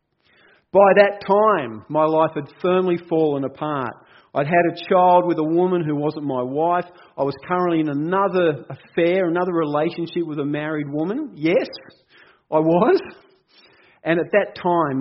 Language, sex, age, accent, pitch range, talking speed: English, male, 40-59, Australian, 135-175 Hz, 155 wpm